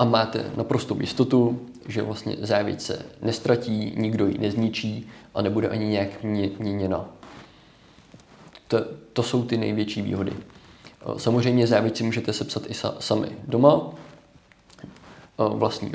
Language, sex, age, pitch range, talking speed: Czech, male, 20-39, 100-115 Hz, 115 wpm